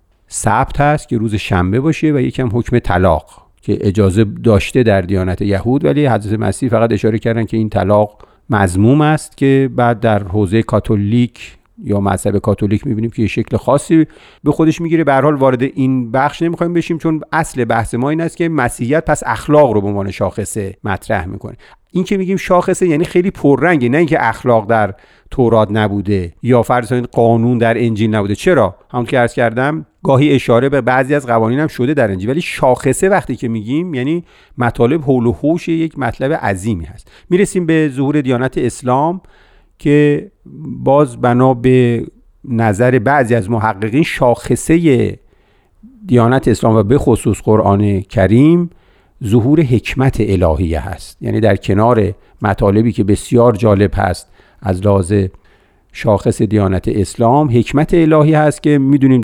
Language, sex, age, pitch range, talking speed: Persian, male, 50-69, 105-140 Hz, 160 wpm